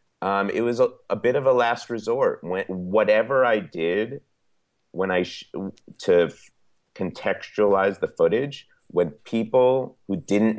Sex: male